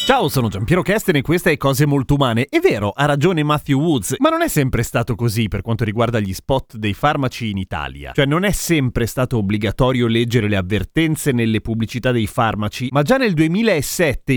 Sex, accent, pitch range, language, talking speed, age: male, native, 115-145 Hz, Italian, 205 wpm, 30-49